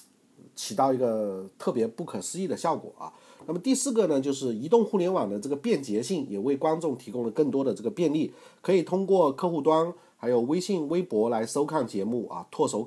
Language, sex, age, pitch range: Chinese, male, 50-69, 125-180 Hz